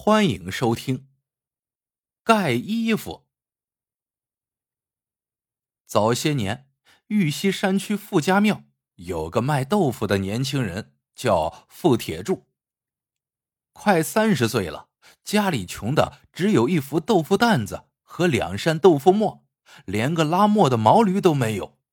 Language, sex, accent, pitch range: Chinese, male, native, 115-185 Hz